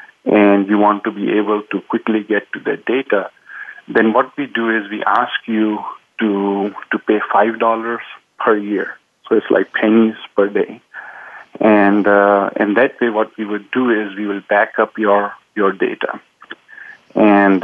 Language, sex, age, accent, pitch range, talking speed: English, male, 50-69, Indian, 100-115 Hz, 175 wpm